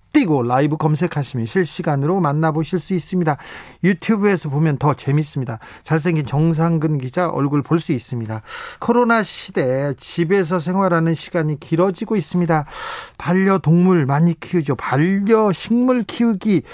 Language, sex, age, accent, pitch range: Korean, male, 40-59, native, 150-195 Hz